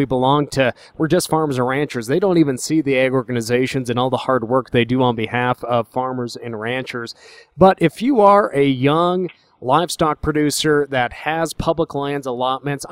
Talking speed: 190 wpm